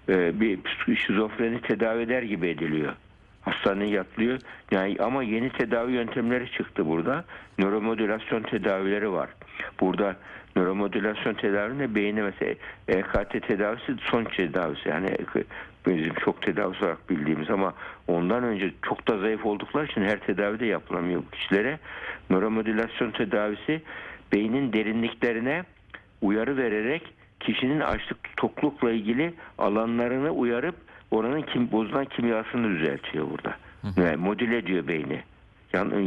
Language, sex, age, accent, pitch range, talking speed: Turkish, male, 60-79, native, 100-120 Hz, 115 wpm